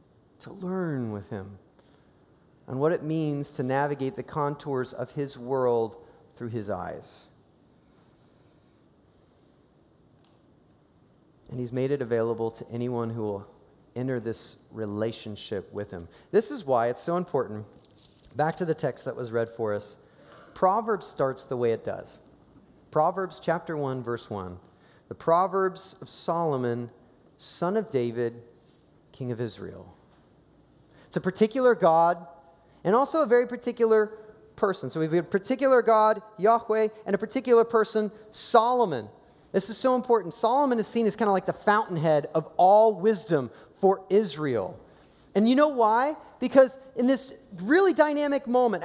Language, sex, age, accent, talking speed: English, male, 30-49, American, 145 wpm